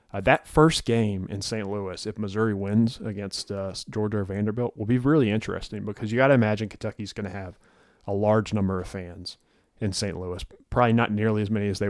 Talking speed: 215 wpm